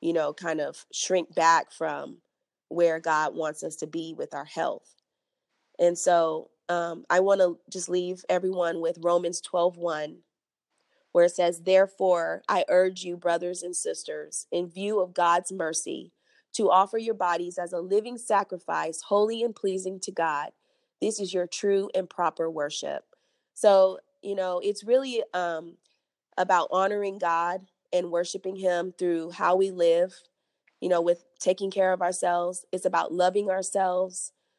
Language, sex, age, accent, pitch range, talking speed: English, female, 30-49, American, 170-195 Hz, 160 wpm